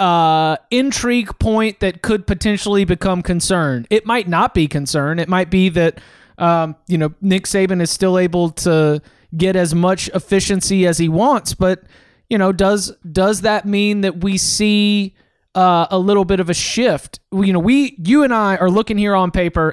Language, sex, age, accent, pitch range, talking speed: English, male, 20-39, American, 175-205 Hz, 185 wpm